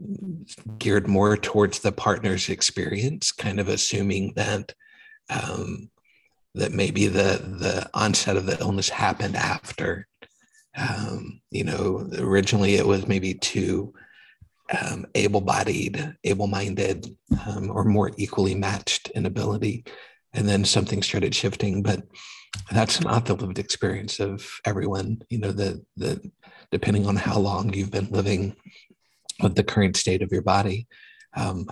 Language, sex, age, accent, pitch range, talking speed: English, male, 50-69, American, 100-120 Hz, 135 wpm